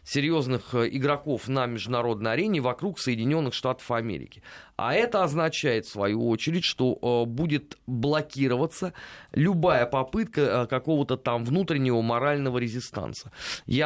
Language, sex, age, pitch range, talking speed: Russian, male, 30-49, 120-155 Hz, 115 wpm